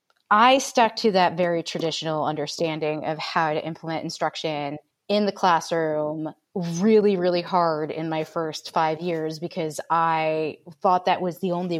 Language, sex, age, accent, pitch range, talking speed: English, female, 30-49, American, 160-205 Hz, 155 wpm